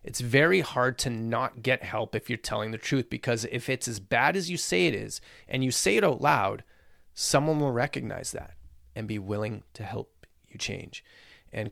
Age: 30-49